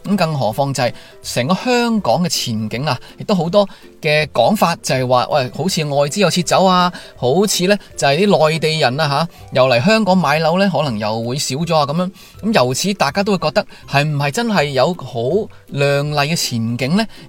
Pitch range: 130-190 Hz